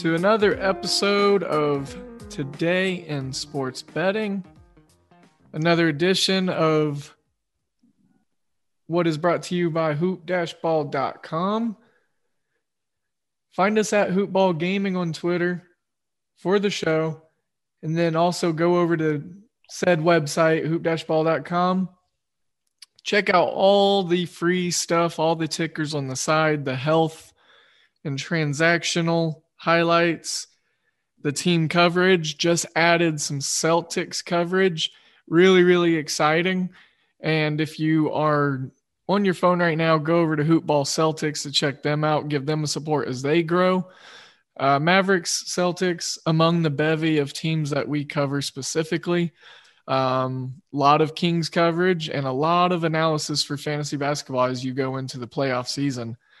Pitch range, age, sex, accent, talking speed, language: 150-180 Hz, 20-39, male, American, 130 wpm, English